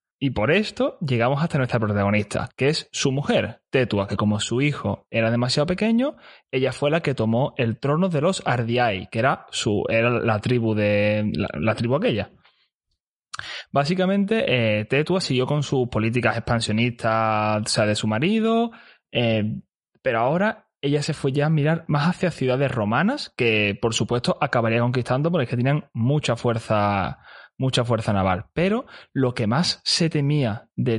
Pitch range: 115-155 Hz